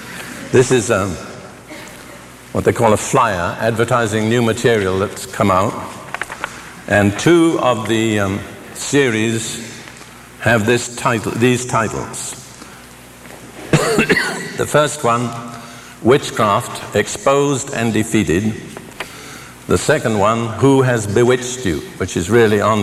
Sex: male